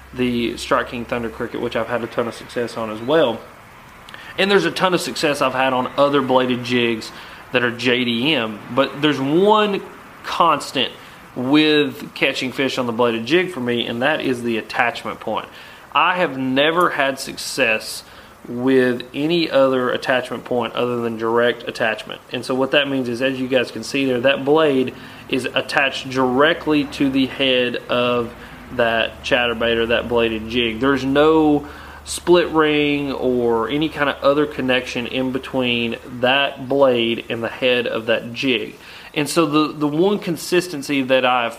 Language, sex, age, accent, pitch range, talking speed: English, male, 30-49, American, 120-150 Hz, 170 wpm